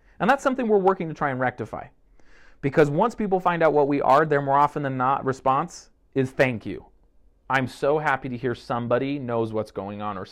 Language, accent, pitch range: English, American, 110-150 Hz